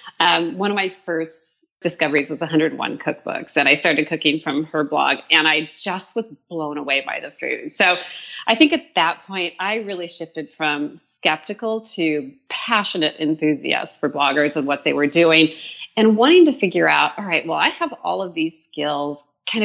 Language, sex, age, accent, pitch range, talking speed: English, female, 40-59, American, 160-225 Hz, 185 wpm